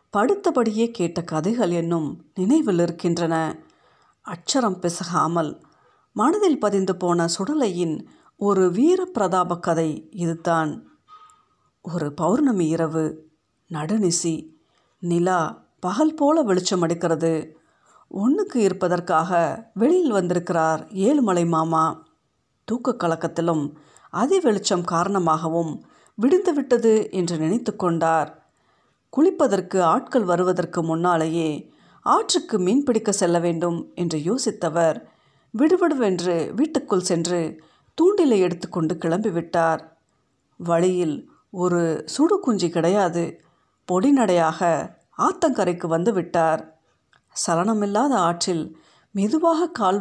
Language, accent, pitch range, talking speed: Tamil, native, 165-225 Hz, 85 wpm